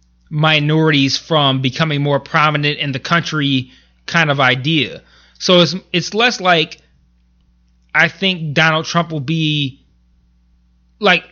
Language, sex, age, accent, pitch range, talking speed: English, male, 20-39, American, 130-175 Hz, 120 wpm